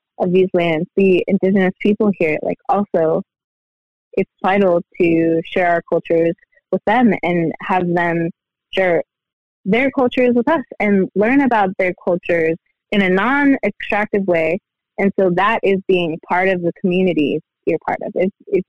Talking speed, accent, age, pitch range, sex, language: 155 wpm, American, 20-39, 180-220 Hz, female, English